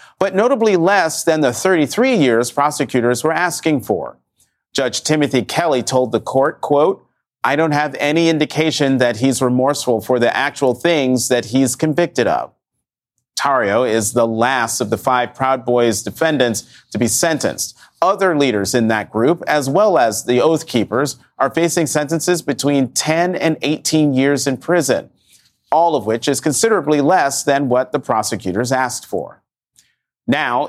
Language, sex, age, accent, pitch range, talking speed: English, male, 40-59, American, 125-160 Hz, 160 wpm